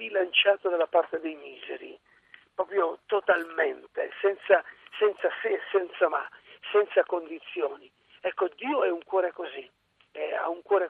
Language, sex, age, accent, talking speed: Italian, male, 50-69, native, 130 wpm